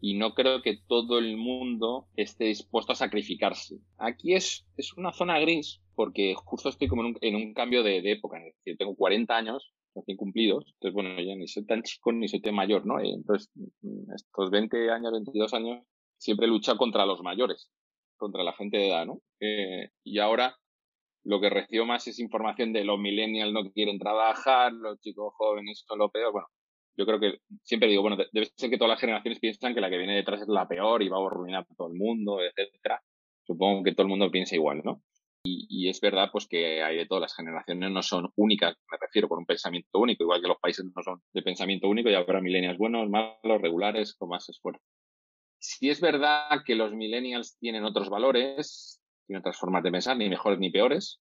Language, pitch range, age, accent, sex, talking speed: Spanish, 100-120 Hz, 30-49, Spanish, male, 215 wpm